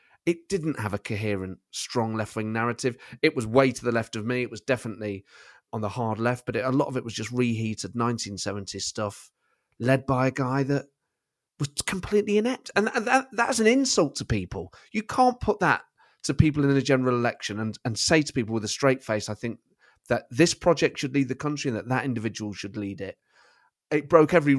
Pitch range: 110-160 Hz